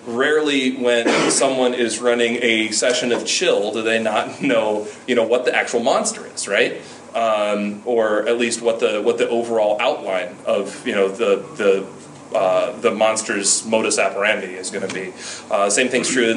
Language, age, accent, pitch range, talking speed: English, 30-49, American, 105-125 Hz, 180 wpm